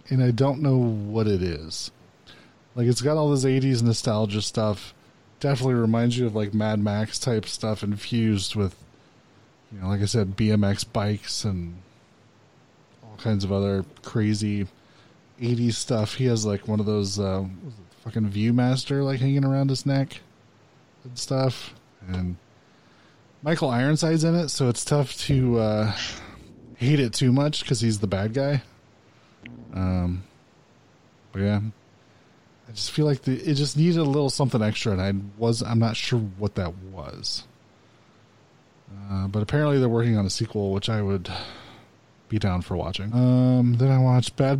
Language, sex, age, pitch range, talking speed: English, male, 20-39, 100-130 Hz, 160 wpm